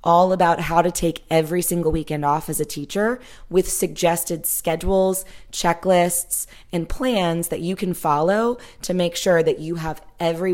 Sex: female